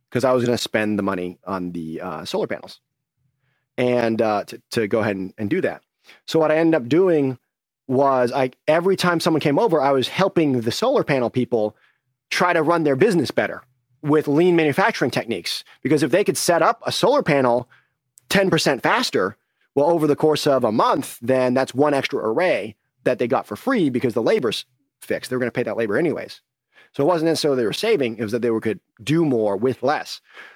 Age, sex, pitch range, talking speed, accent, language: 30-49, male, 125-155 Hz, 210 wpm, American, English